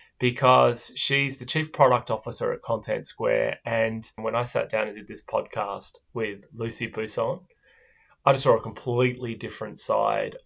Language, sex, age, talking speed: English, male, 20-39, 160 wpm